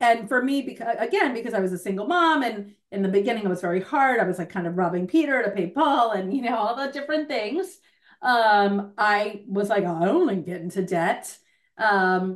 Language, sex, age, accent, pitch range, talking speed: English, female, 30-49, American, 195-265 Hz, 240 wpm